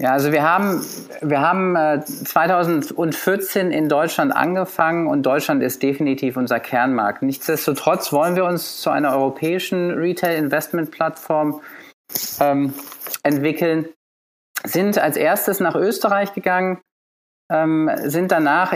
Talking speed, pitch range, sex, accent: 105 wpm, 150-185 Hz, male, German